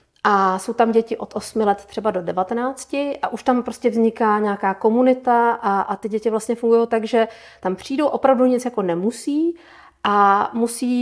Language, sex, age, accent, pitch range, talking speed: Czech, female, 40-59, native, 200-250 Hz, 175 wpm